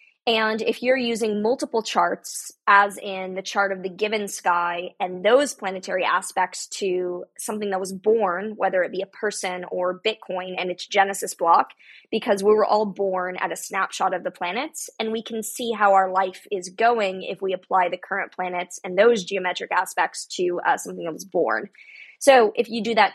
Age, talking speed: 20-39, 195 wpm